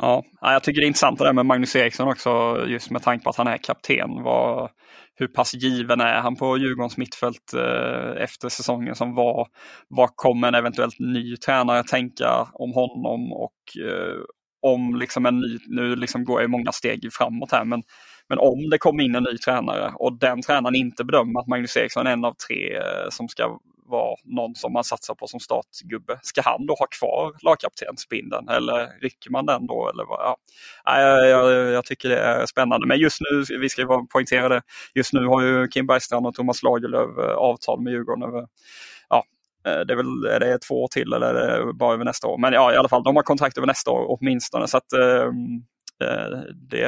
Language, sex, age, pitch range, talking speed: Swedish, male, 20-39, 120-130 Hz, 195 wpm